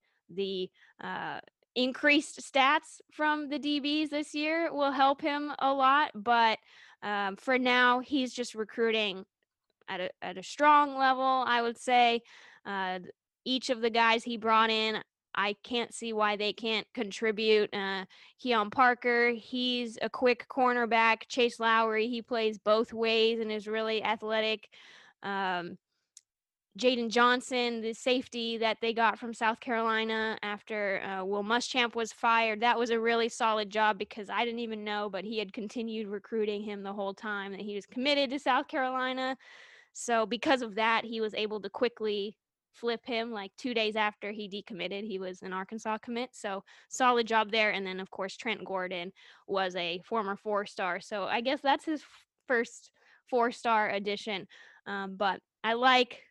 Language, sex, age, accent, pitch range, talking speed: English, female, 10-29, American, 210-250 Hz, 165 wpm